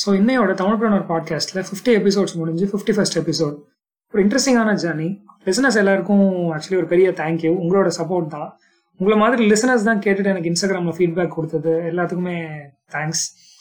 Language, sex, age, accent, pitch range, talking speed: Tamil, male, 20-39, native, 160-195 Hz, 150 wpm